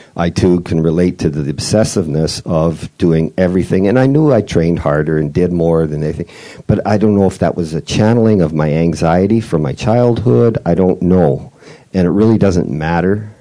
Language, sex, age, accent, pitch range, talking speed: English, male, 50-69, American, 85-100 Hz, 195 wpm